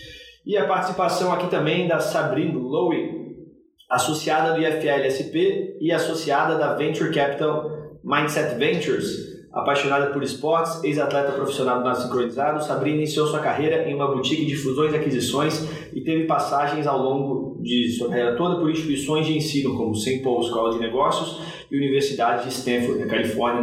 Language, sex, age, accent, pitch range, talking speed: Portuguese, male, 20-39, Brazilian, 130-170 Hz, 155 wpm